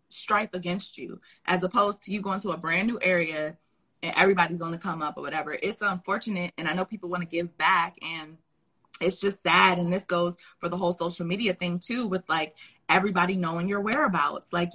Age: 20-39